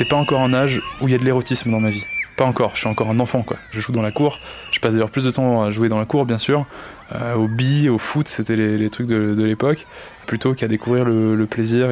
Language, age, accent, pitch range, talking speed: French, 20-39, French, 115-135 Hz, 285 wpm